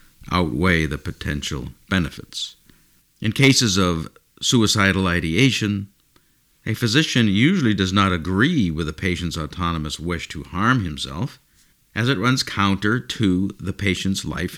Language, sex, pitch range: English, male, 90-115 Hz